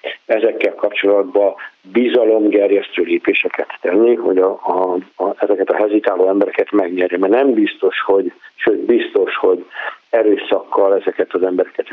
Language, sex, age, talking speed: Hungarian, male, 60-79, 125 wpm